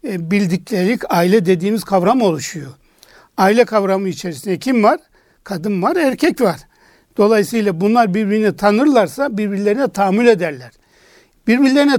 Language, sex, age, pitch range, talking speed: Turkish, male, 60-79, 190-240 Hz, 110 wpm